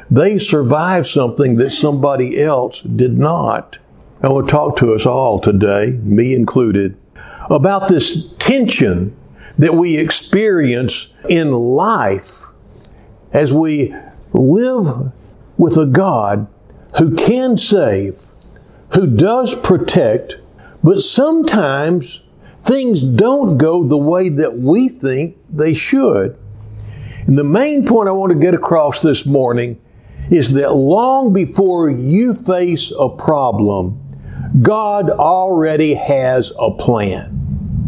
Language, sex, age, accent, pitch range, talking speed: English, male, 60-79, American, 120-185 Hz, 115 wpm